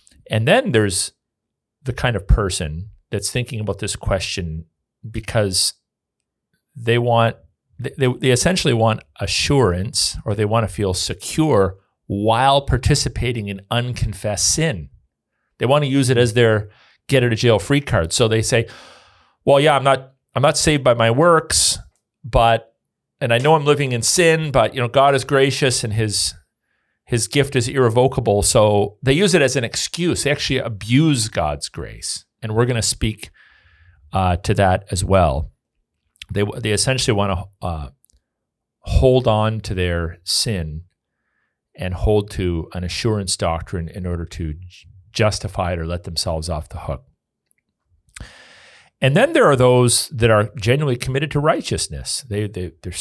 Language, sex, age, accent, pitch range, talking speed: English, male, 40-59, American, 95-125 Hz, 160 wpm